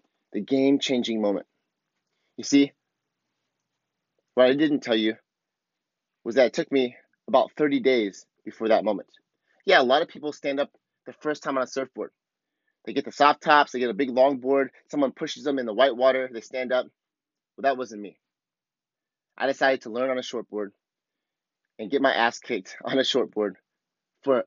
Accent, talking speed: American, 185 wpm